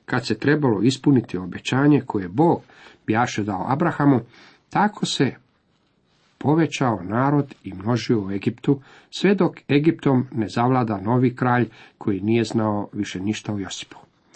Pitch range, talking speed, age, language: 110-140 Hz, 135 wpm, 40-59, Croatian